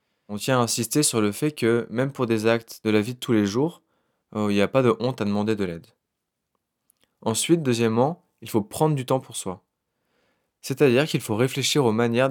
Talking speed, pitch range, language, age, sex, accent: 215 wpm, 110-125 Hz, French, 20-39, male, French